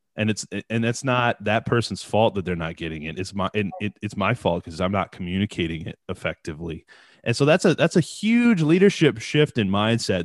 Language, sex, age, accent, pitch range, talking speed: English, male, 20-39, American, 90-115 Hz, 215 wpm